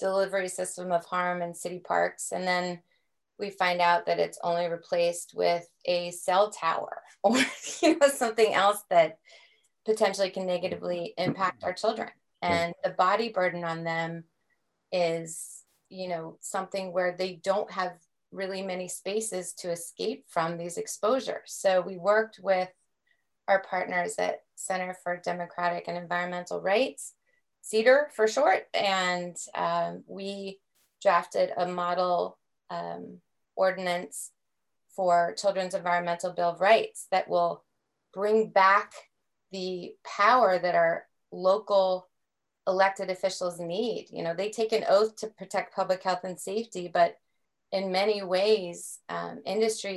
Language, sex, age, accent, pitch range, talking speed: English, female, 30-49, American, 175-195 Hz, 135 wpm